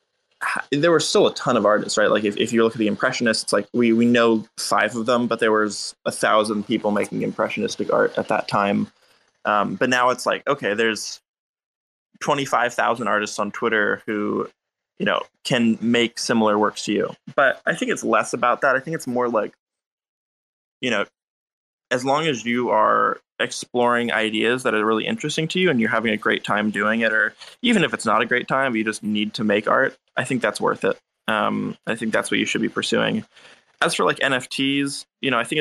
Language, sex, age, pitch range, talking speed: English, male, 20-39, 110-135 Hz, 210 wpm